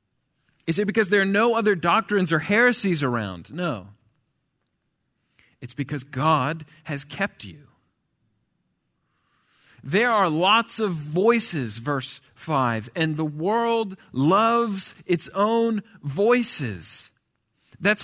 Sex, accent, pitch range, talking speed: male, American, 145-210 Hz, 110 wpm